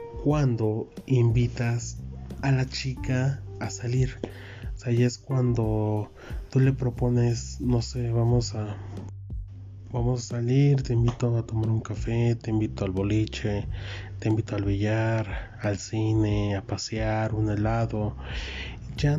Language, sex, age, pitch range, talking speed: Spanish, male, 20-39, 100-120 Hz, 135 wpm